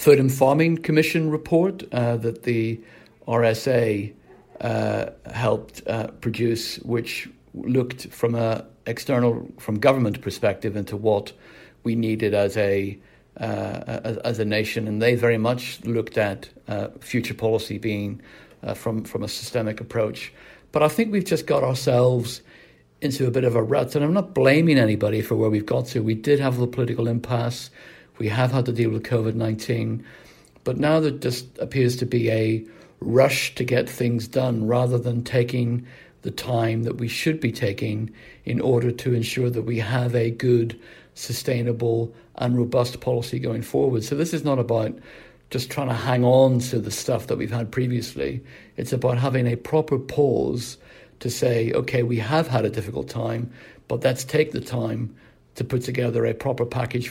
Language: English